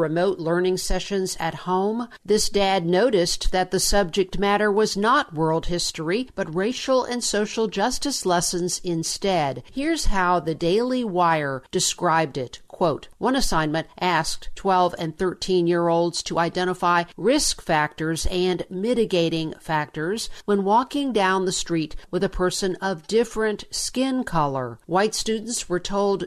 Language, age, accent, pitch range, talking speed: English, 50-69, American, 170-210 Hz, 135 wpm